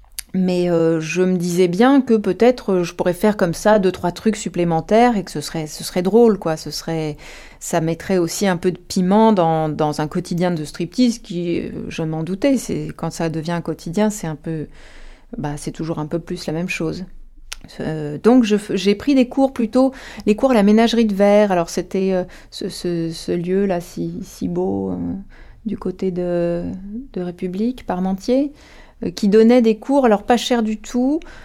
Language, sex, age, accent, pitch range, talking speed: French, female, 30-49, French, 175-215 Hz, 200 wpm